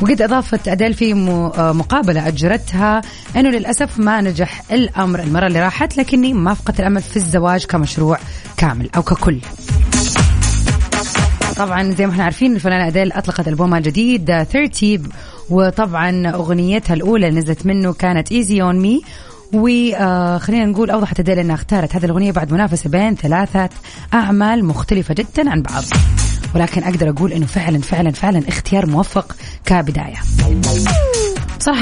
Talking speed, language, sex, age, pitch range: 140 wpm, Arabic, female, 20-39, 165-215 Hz